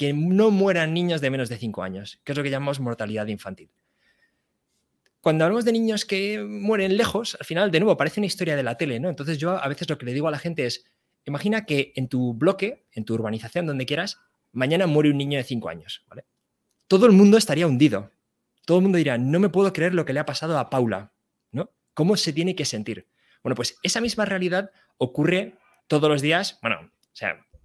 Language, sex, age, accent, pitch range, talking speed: Spanish, male, 20-39, Spanish, 130-190 Hz, 220 wpm